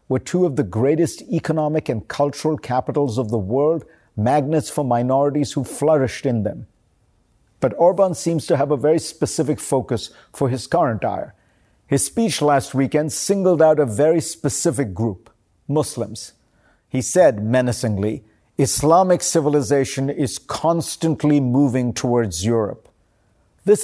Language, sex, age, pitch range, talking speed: English, male, 50-69, 120-155 Hz, 135 wpm